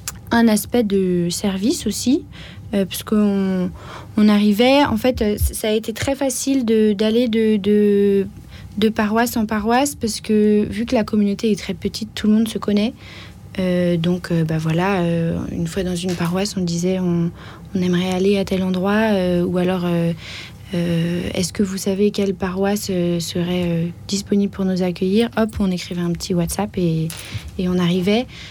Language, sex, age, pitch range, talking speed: French, female, 30-49, 180-215 Hz, 175 wpm